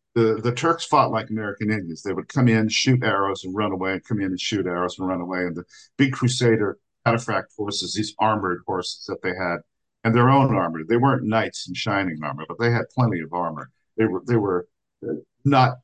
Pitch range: 95-125 Hz